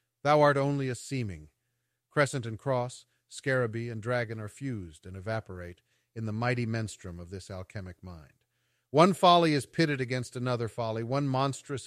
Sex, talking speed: male, 160 wpm